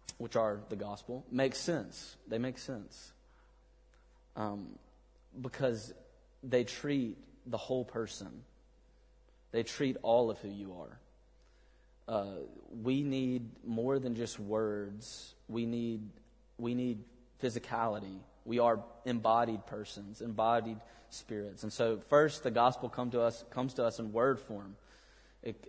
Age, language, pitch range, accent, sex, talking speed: 30-49, English, 105-120 Hz, American, male, 130 wpm